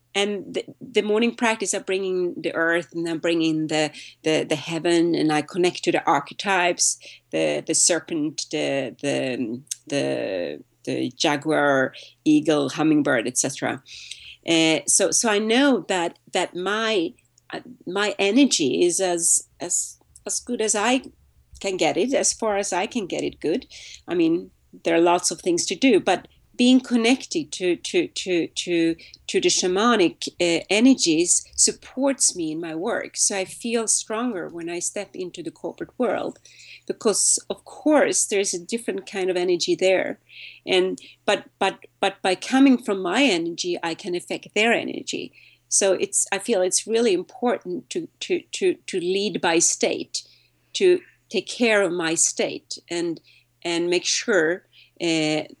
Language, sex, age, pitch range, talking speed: English, female, 40-59, 165-245 Hz, 160 wpm